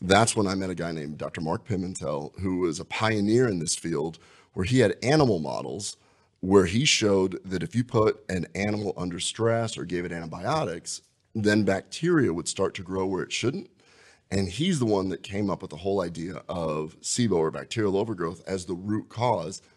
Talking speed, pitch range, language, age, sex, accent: 200 wpm, 90-110 Hz, English, 30-49, male, American